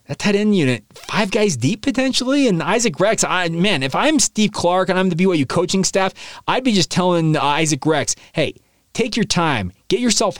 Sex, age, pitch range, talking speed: male, 30-49, 135-185 Hz, 215 wpm